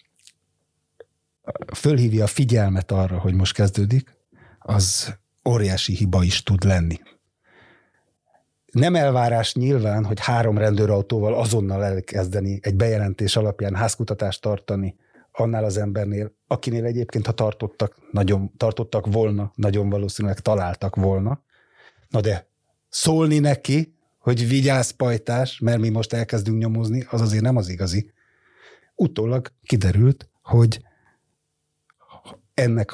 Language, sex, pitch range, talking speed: Hungarian, male, 100-120 Hz, 110 wpm